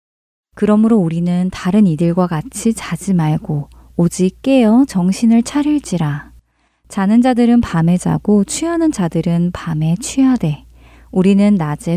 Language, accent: Korean, native